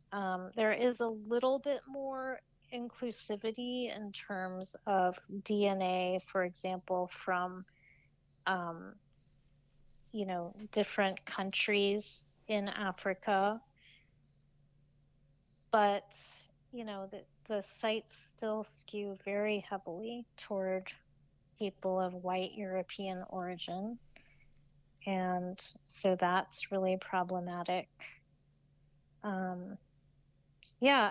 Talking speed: 85 wpm